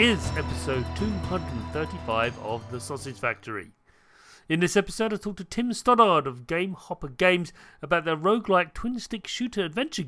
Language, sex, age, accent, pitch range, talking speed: English, male, 40-59, British, 125-200 Hz, 155 wpm